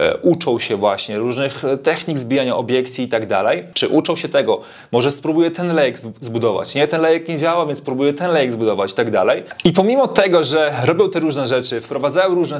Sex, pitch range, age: male, 125-160 Hz, 30-49